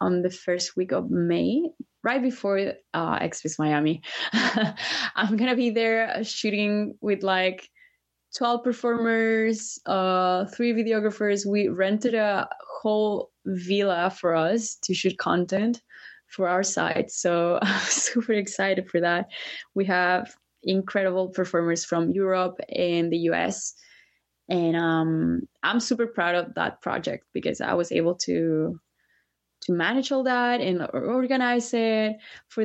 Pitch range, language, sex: 180-235 Hz, English, female